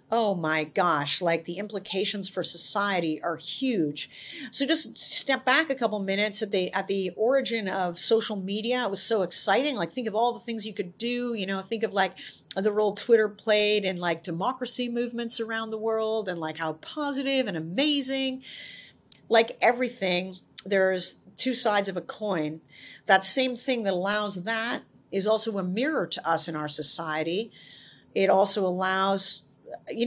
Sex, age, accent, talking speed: female, 40-59, American, 175 wpm